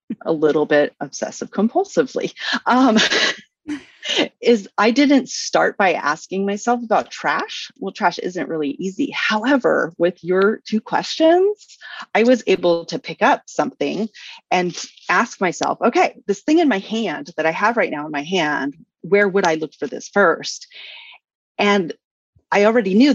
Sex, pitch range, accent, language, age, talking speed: female, 155-235 Hz, American, English, 30-49, 155 wpm